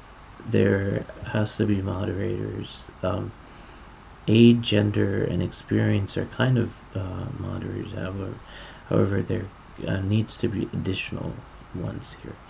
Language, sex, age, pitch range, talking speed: English, male, 40-59, 90-110 Hz, 120 wpm